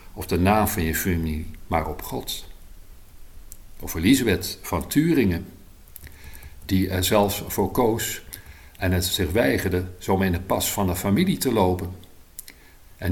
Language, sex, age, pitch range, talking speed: Dutch, male, 50-69, 85-105 Hz, 145 wpm